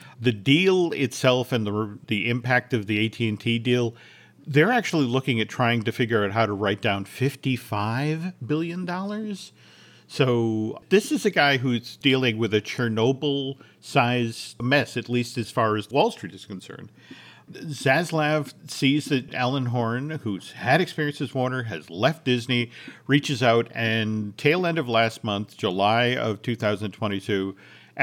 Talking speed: 145 wpm